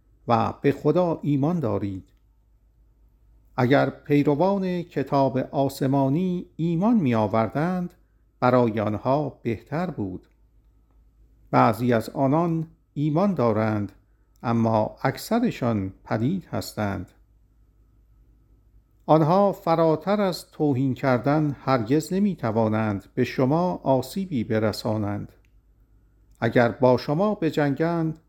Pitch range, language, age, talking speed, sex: 110-150 Hz, Persian, 50-69, 85 wpm, male